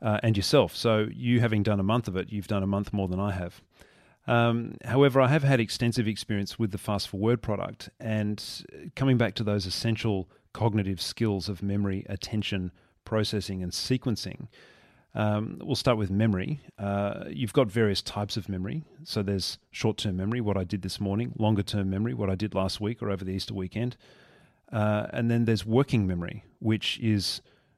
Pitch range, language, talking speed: 95-115 Hz, English, 190 wpm